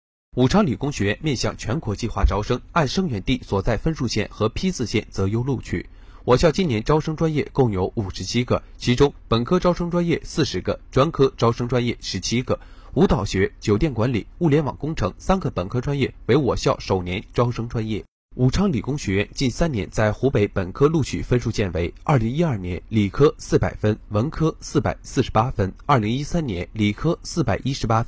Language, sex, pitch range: Chinese, male, 100-145 Hz